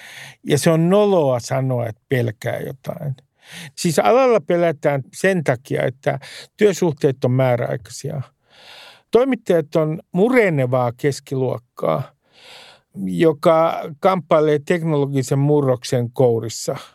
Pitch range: 130-175 Hz